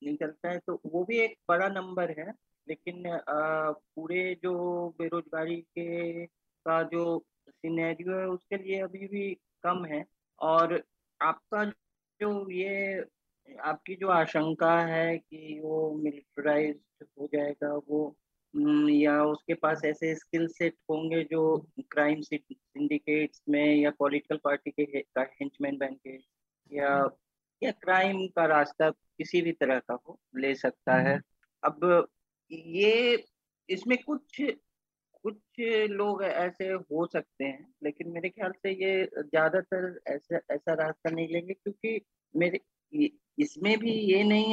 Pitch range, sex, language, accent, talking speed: 150-190 Hz, male, Hindi, native, 130 wpm